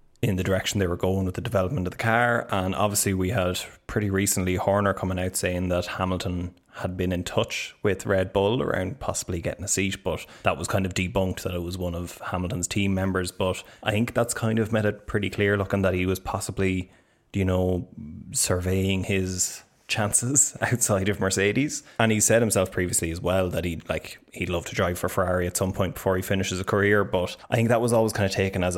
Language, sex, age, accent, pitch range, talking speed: English, male, 20-39, Irish, 90-100 Hz, 225 wpm